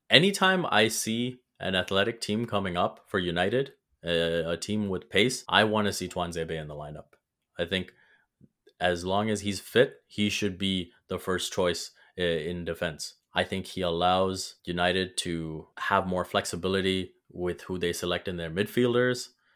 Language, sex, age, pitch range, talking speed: English, male, 20-39, 90-105 Hz, 165 wpm